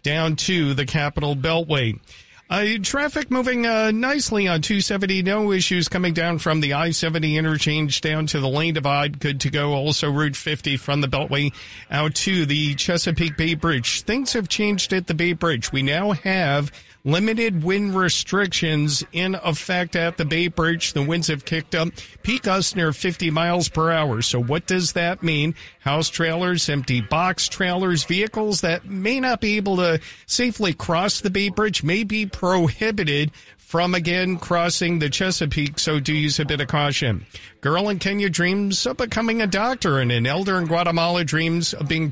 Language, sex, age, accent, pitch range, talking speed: English, male, 50-69, American, 150-190 Hz, 175 wpm